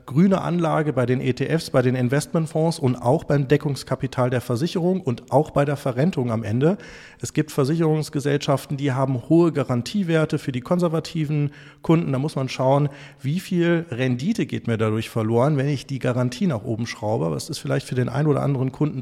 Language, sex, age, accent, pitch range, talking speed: German, male, 40-59, German, 120-145 Hz, 185 wpm